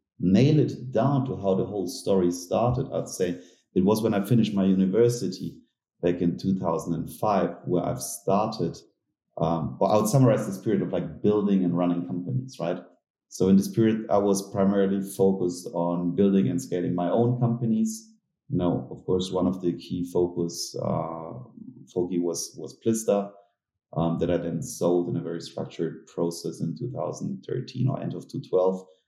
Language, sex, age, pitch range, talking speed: English, male, 30-49, 85-100 Hz, 175 wpm